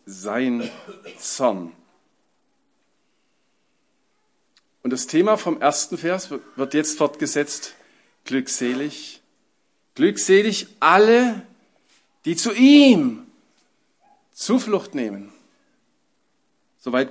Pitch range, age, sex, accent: 175-275 Hz, 50-69, male, German